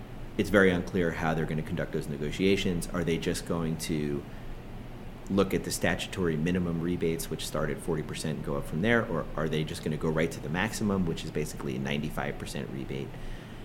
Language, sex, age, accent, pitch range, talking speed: English, male, 30-49, American, 75-90 Hz, 205 wpm